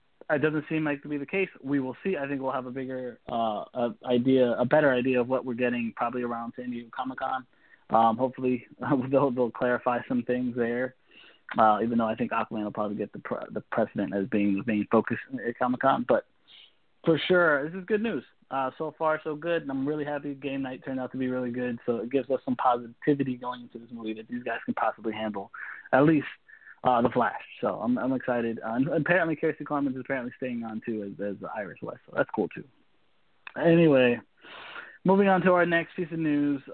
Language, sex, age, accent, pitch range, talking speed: English, male, 20-39, American, 125-155 Hz, 220 wpm